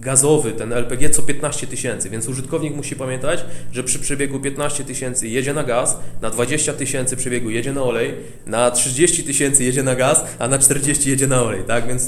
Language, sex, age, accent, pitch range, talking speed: Polish, male, 20-39, native, 120-145 Hz, 195 wpm